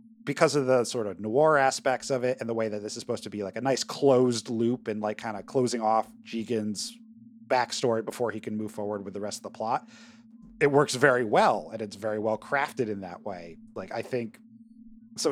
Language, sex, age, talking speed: English, male, 30-49, 225 wpm